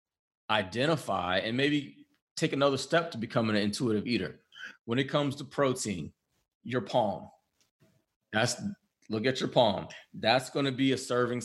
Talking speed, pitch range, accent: 150 wpm, 105-120 Hz, American